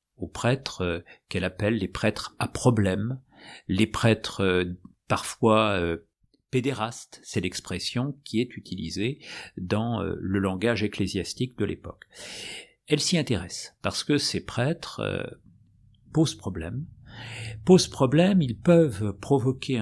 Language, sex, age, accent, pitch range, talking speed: French, male, 50-69, French, 95-135 Hz, 125 wpm